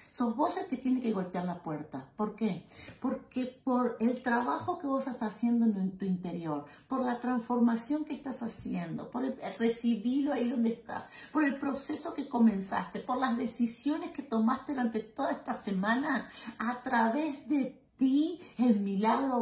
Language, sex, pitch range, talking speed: Spanish, female, 225-295 Hz, 160 wpm